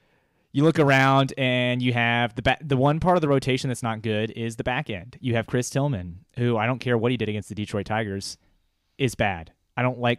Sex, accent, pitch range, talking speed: male, American, 95-120 Hz, 240 wpm